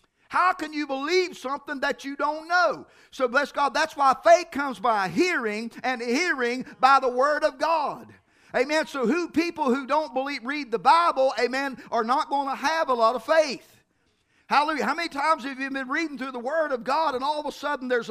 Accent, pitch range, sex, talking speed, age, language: American, 255-320 Hz, male, 210 wpm, 50-69, English